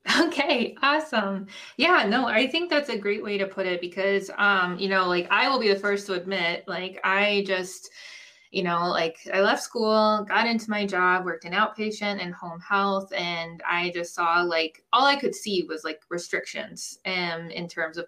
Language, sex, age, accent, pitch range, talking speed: English, female, 20-39, American, 175-220 Hz, 200 wpm